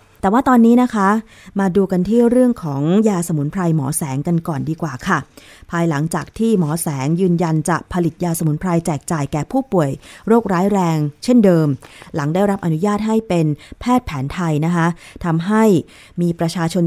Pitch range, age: 160-195 Hz, 20-39